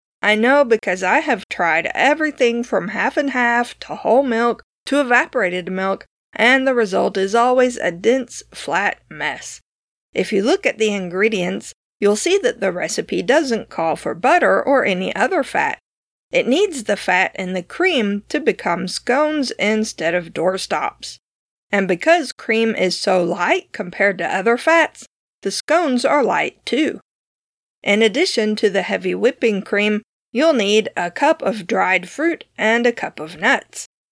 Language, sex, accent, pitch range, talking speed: English, female, American, 195-270 Hz, 160 wpm